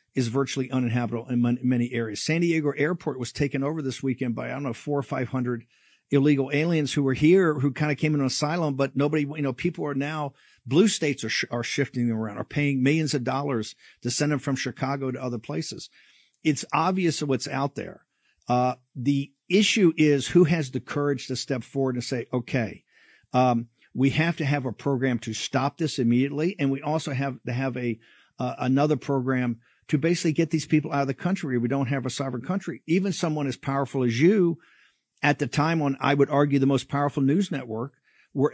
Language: English